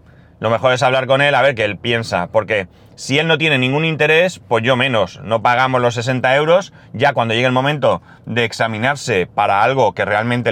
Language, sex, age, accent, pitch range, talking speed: Spanish, male, 30-49, Spanish, 120-150 Hz, 210 wpm